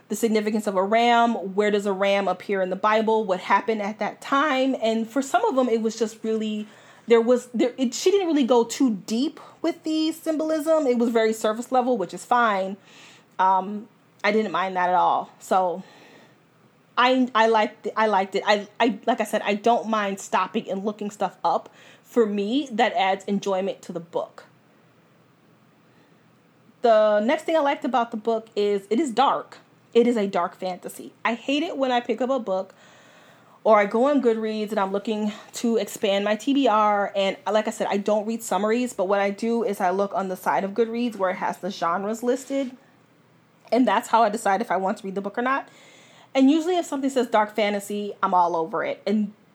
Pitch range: 195-240 Hz